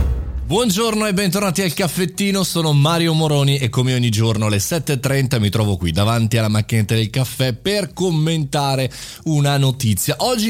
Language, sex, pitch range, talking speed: Italian, male, 105-150 Hz, 155 wpm